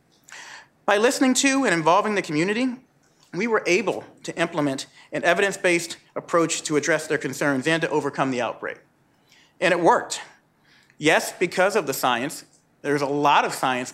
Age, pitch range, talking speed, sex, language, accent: 40-59, 140-180 Hz, 160 wpm, male, English, American